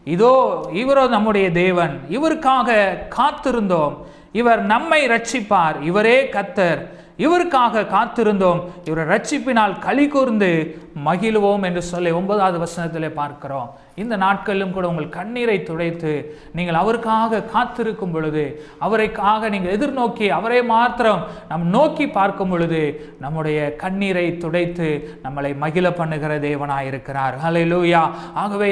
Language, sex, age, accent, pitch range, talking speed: Tamil, male, 30-49, native, 170-225 Hz, 105 wpm